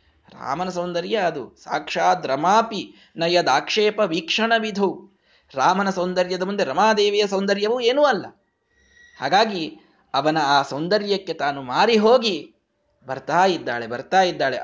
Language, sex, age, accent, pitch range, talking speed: Kannada, male, 20-39, native, 145-190 Hz, 105 wpm